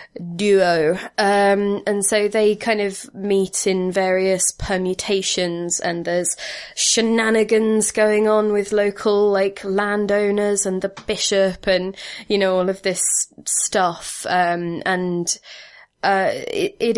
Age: 20-39